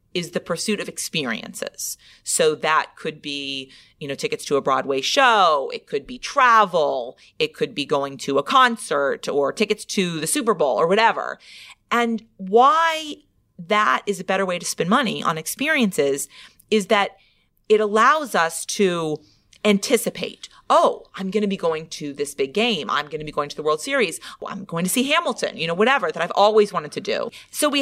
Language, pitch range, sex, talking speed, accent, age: English, 155-235 Hz, female, 190 wpm, American, 30-49